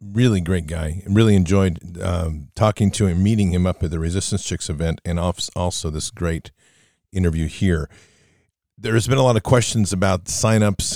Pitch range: 85-100 Hz